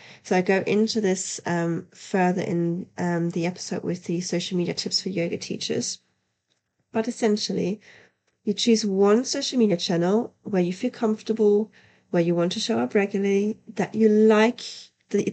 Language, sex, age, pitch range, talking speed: English, female, 30-49, 185-220 Hz, 165 wpm